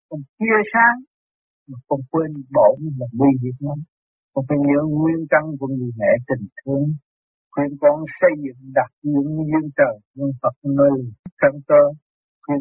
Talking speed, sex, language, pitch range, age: 140 wpm, male, Vietnamese, 135-185 Hz, 60-79